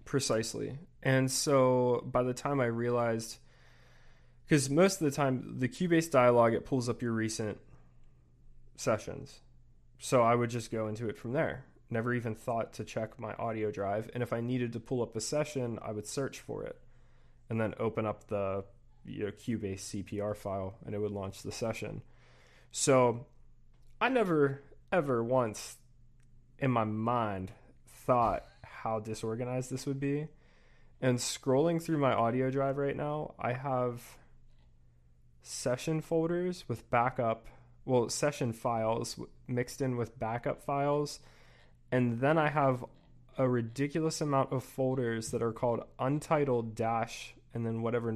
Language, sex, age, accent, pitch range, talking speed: English, male, 20-39, American, 110-130 Hz, 150 wpm